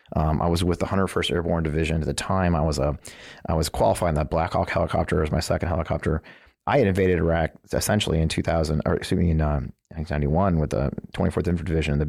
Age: 40-59